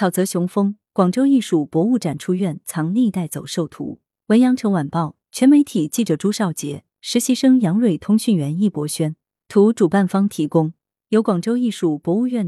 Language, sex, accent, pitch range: Chinese, female, native, 160-220 Hz